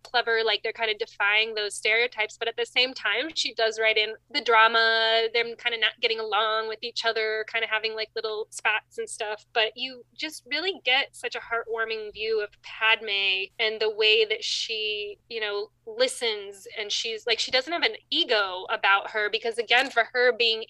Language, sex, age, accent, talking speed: English, female, 20-39, American, 205 wpm